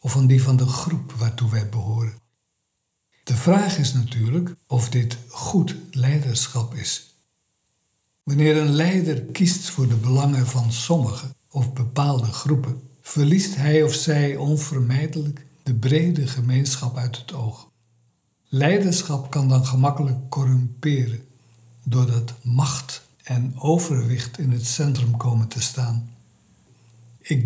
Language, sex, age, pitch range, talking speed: Dutch, male, 60-79, 120-145 Hz, 125 wpm